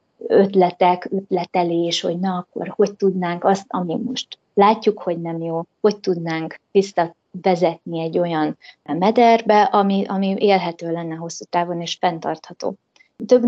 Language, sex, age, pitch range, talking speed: Hungarian, female, 20-39, 175-195 Hz, 135 wpm